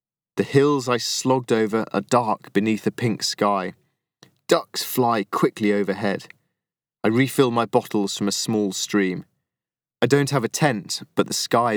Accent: British